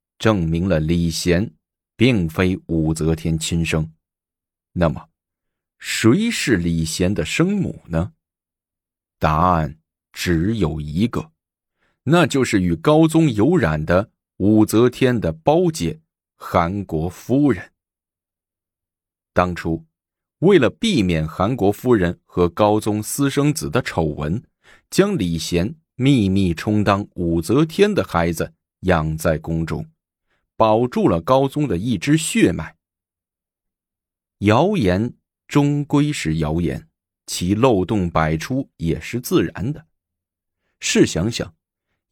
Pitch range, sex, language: 85-110 Hz, male, Chinese